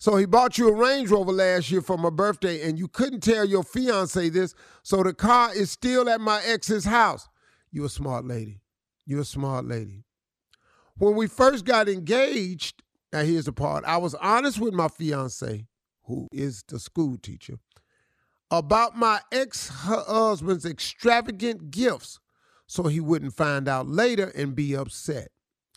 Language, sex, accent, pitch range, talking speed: English, male, American, 130-195 Hz, 165 wpm